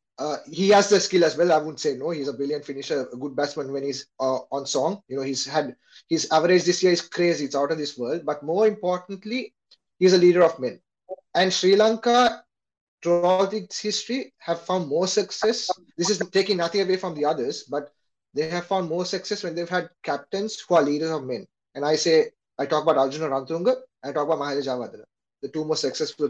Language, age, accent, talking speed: English, 20-39, Indian, 215 wpm